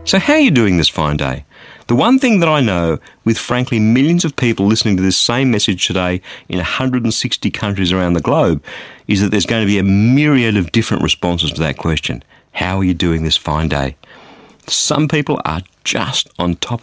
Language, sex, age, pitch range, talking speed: English, male, 50-69, 90-135 Hz, 205 wpm